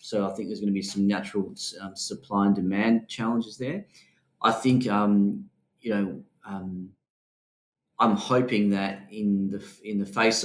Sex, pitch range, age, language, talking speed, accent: male, 95-110 Hz, 30-49, English, 165 wpm, Australian